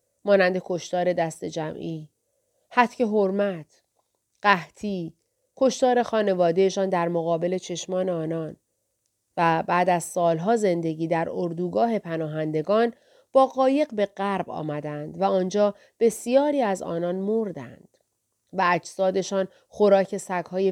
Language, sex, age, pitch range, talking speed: Persian, female, 30-49, 155-215 Hz, 105 wpm